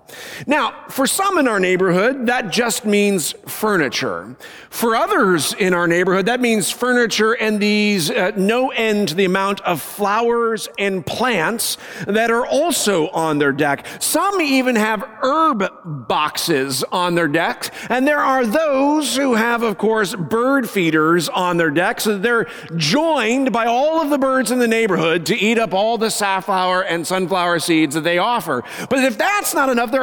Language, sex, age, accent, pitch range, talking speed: English, male, 40-59, American, 190-265 Hz, 170 wpm